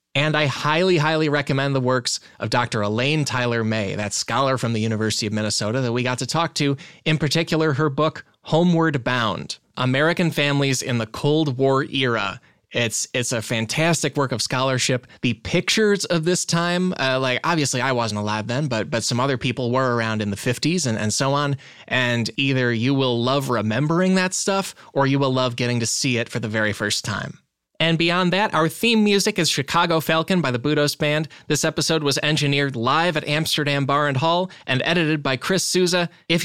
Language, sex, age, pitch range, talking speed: English, male, 20-39, 120-160 Hz, 200 wpm